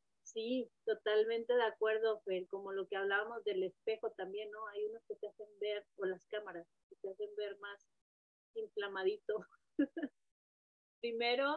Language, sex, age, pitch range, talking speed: Spanish, female, 30-49, 210-350 Hz, 150 wpm